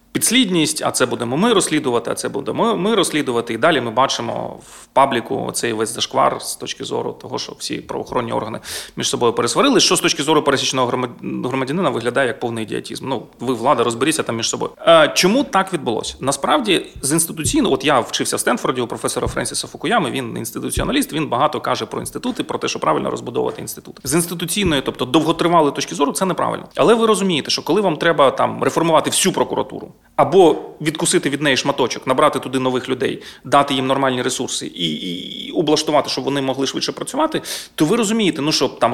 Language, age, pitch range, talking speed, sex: Ukrainian, 30-49, 130-185 Hz, 190 wpm, male